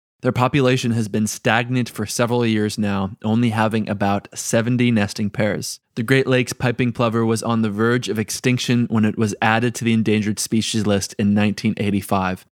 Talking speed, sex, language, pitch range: 175 wpm, male, English, 105-125 Hz